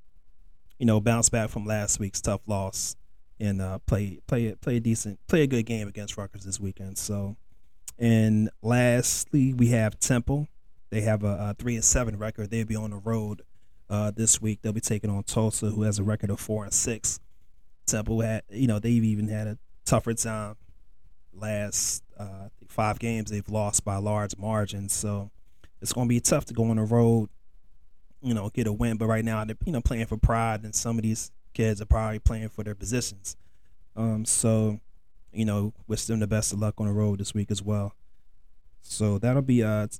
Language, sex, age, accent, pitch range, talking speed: English, male, 30-49, American, 100-115 Hz, 205 wpm